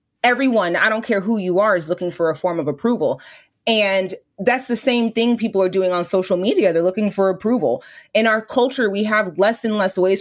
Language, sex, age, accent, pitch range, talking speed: English, female, 20-39, American, 170-210 Hz, 225 wpm